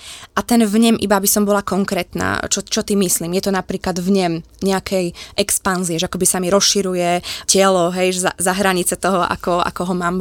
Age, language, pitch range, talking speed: 20-39, Slovak, 185-205 Hz, 200 wpm